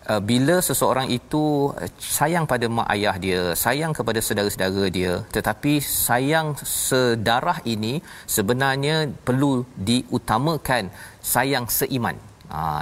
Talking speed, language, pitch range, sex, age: 105 wpm, Malayalam, 105-135 Hz, male, 40-59